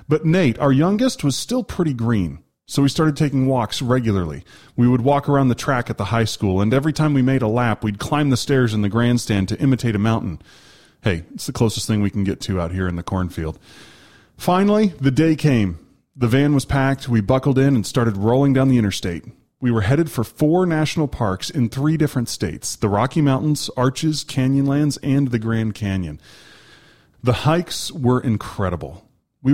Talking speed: 200 wpm